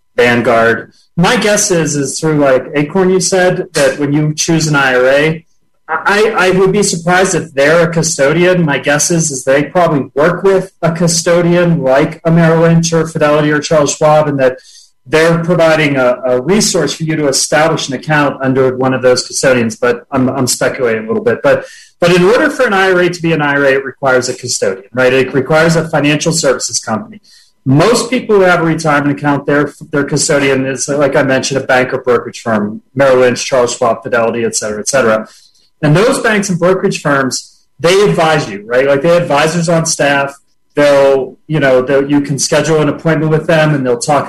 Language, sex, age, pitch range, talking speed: English, male, 30-49, 135-170 Hz, 200 wpm